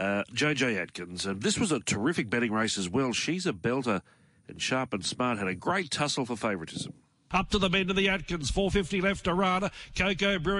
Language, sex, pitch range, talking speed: English, male, 180-235 Hz, 220 wpm